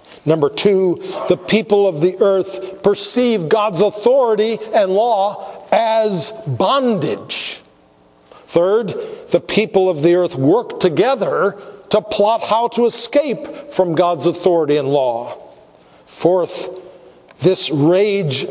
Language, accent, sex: English, American, male